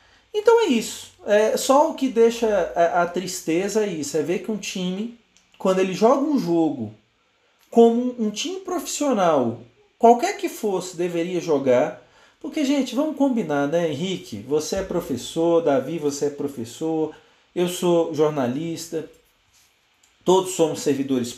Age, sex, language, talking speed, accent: 40-59, male, Portuguese, 140 wpm, Brazilian